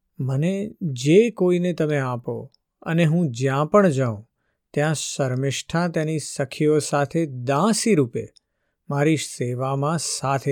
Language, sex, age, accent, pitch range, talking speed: Gujarati, male, 50-69, native, 130-160 Hz, 110 wpm